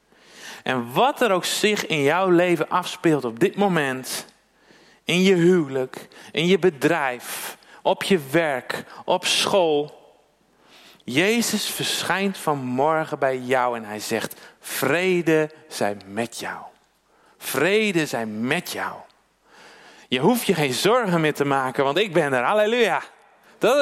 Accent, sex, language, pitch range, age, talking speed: Dutch, male, Dutch, 165-230 Hz, 40-59, 135 wpm